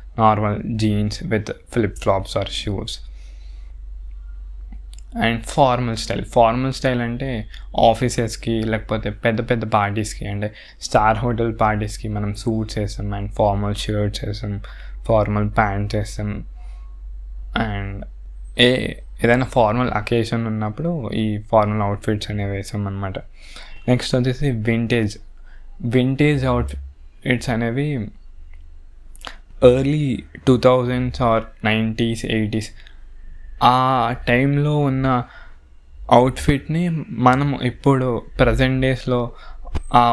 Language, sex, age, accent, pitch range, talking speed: Telugu, male, 20-39, native, 100-125 Hz, 105 wpm